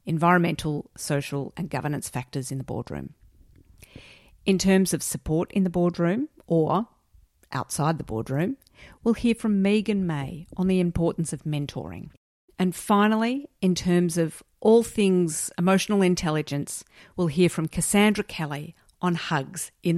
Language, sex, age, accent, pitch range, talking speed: English, female, 50-69, Australian, 155-195 Hz, 140 wpm